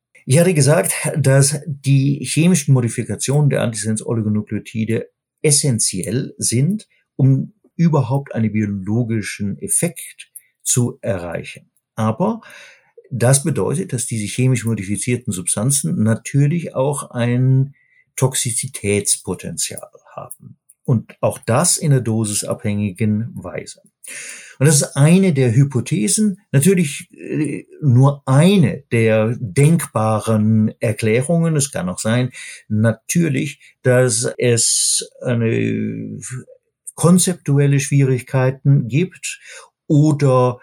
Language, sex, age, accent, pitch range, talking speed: German, male, 50-69, German, 110-150 Hz, 90 wpm